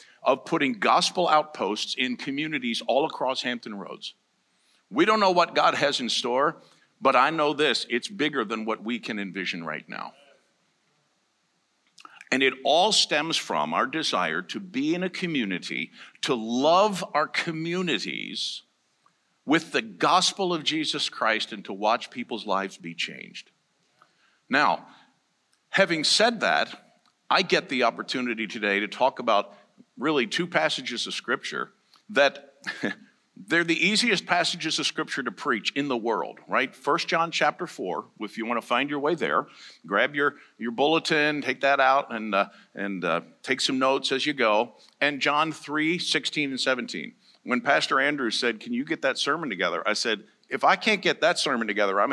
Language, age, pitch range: English, 50-69, 120-180 Hz